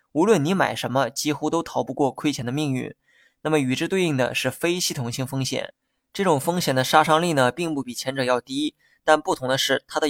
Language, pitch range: Chinese, 130-160 Hz